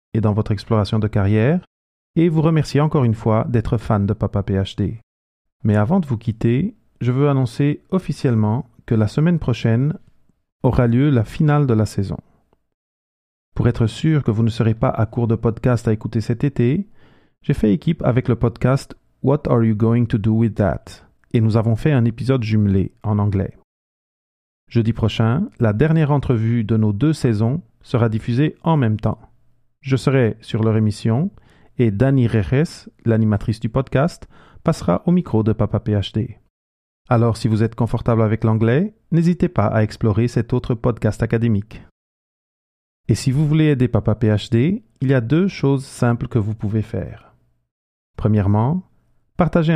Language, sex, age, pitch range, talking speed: French, male, 40-59, 110-130 Hz, 170 wpm